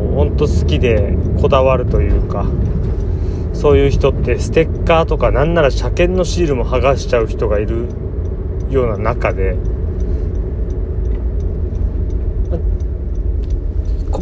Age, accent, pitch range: 30-49, native, 80-90 Hz